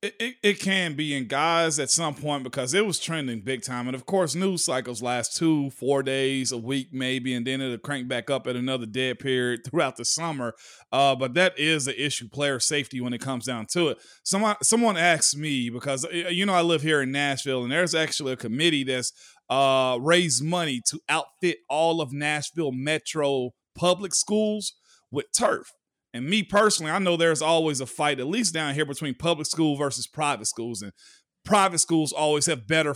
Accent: American